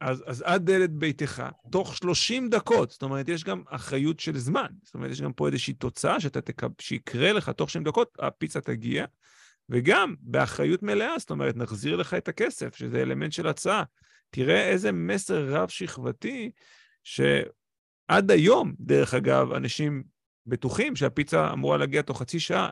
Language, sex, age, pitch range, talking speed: Hebrew, male, 30-49, 120-170 Hz, 160 wpm